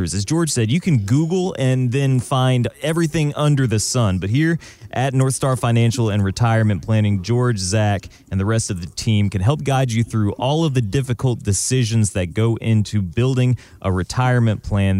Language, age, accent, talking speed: English, 30-49, American, 190 wpm